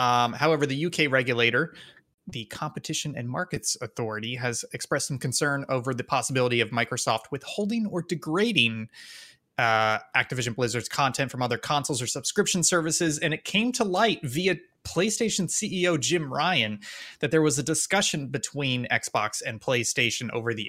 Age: 20-39